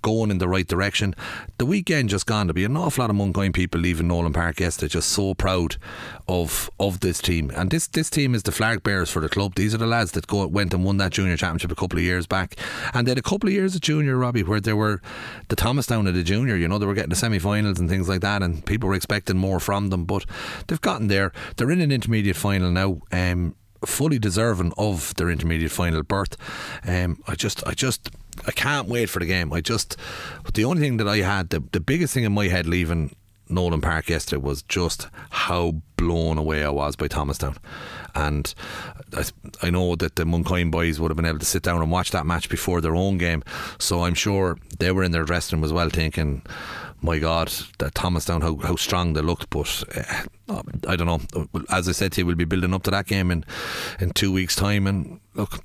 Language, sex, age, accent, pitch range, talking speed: English, male, 30-49, Irish, 85-105 Hz, 235 wpm